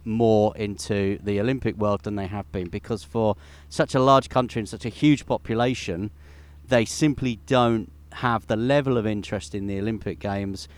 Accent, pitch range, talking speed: British, 100-115 Hz, 180 wpm